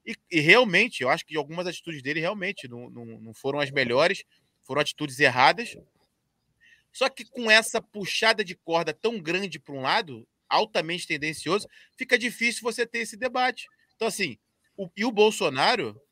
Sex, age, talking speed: male, 20-39, 170 wpm